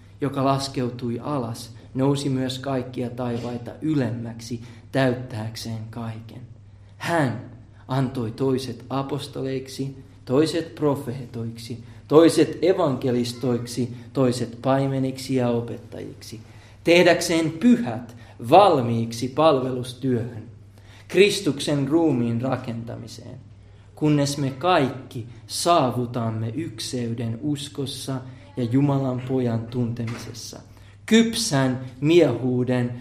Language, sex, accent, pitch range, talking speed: Finnish, male, native, 115-140 Hz, 75 wpm